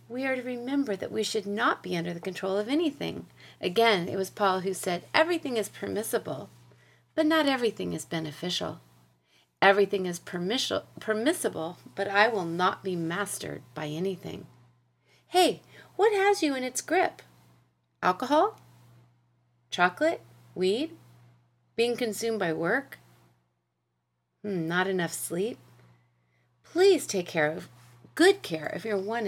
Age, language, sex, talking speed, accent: 30-49, English, female, 135 wpm, American